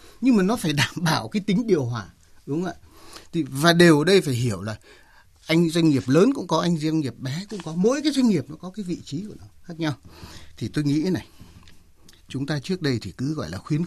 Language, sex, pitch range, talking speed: Vietnamese, male, 105-160 Hz, 245 wpm